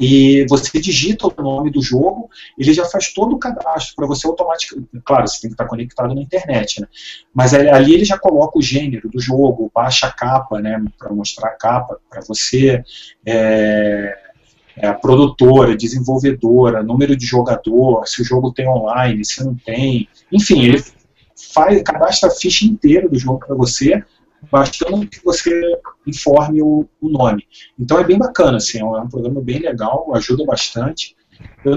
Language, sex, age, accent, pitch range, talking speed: Portuguese, male, 40-59, Brazilian, 125-155 Hz, 170 wpm